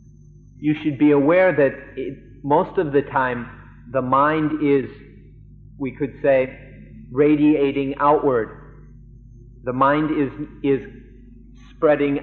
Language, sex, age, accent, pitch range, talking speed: English, male, 50-69, American, 125-150 Hz, 115 wpm